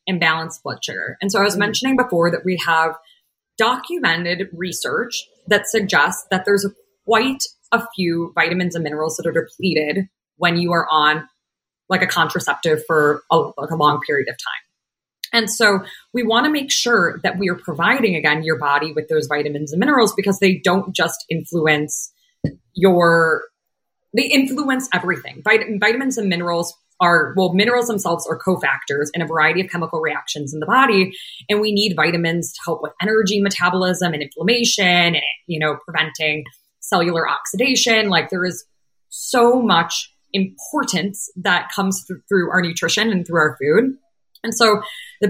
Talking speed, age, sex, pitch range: 165 wpm, 20-39, female, 160-205 Hz